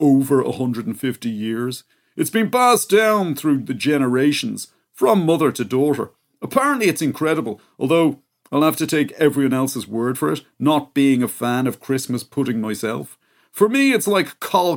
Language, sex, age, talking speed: English, male, 40-59, 165 wpm